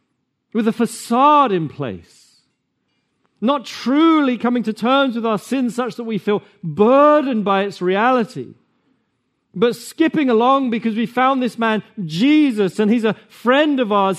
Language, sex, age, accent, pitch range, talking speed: English, male, 40-59, British, 170-245 Hz, 150 wpm